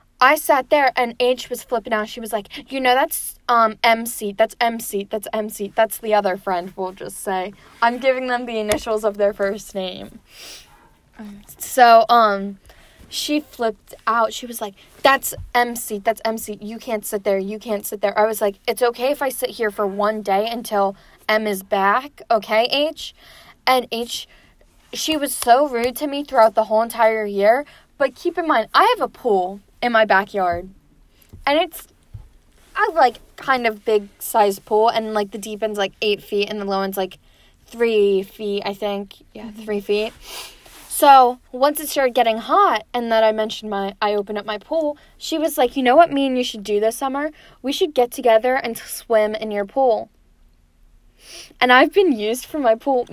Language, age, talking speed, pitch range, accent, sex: English, 10-29, 200 wpm, 210-250 Hz, American, female